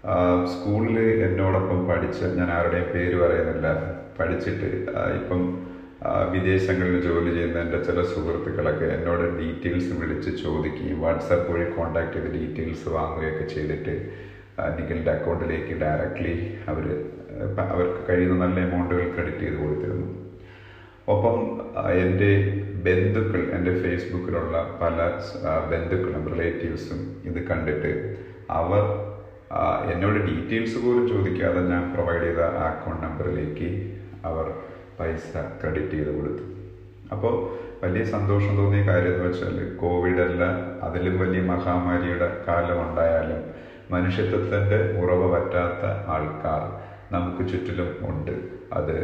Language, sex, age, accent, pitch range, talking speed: Malayalam, male, 30-49, native, 85-95 Hz, 100 wpm